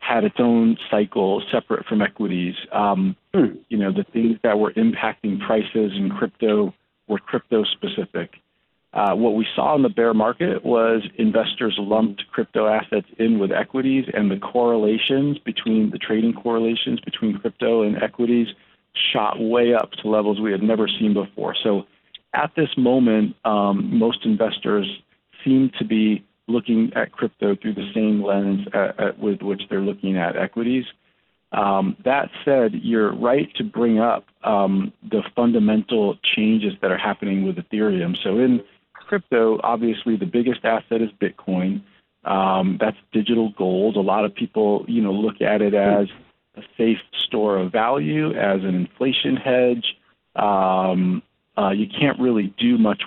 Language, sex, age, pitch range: English, male, 50-69, 100-120 Hz